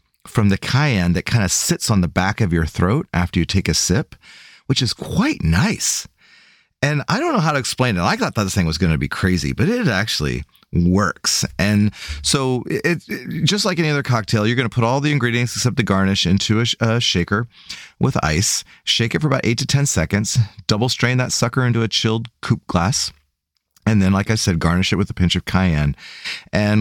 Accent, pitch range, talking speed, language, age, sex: American, 90-120 Hz, 215 wpm, English, 30-49, male